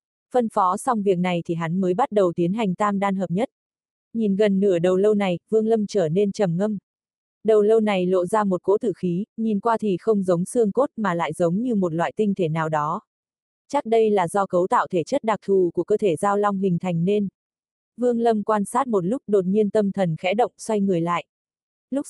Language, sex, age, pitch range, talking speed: Vietnamese, female, 20-39, 185-220 Hz, 240 wpm